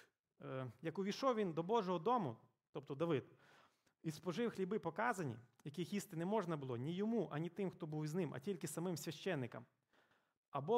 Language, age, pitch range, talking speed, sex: Ukrainian, 30-49, 140-195 Hz, 165 wpm, male